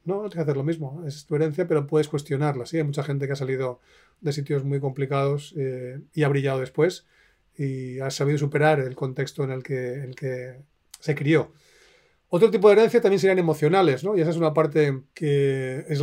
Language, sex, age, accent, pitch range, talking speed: Spanish, male, 30-49, Spanish, 140-160 Hz, 210 wpm